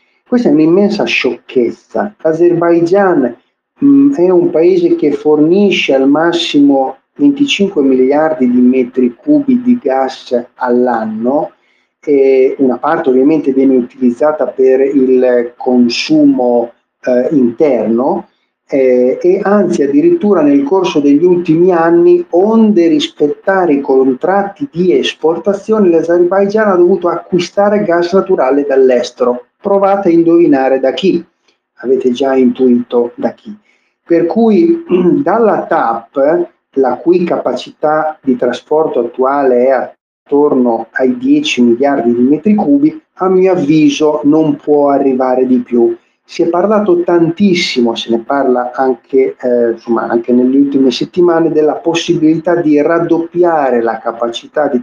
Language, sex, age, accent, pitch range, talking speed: Italian, male, 40-59, native, 130-185 Hz, 120 wpm